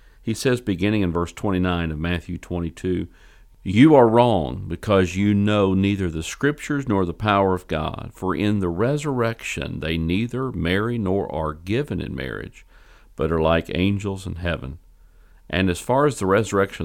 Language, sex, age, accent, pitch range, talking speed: English, male, 50-69, American, 80-105 Hz, 165 wpm